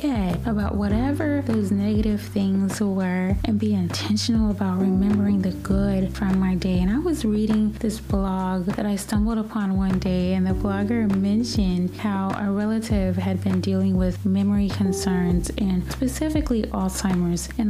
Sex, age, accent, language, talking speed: female, 20-39, American, English, 155 wpm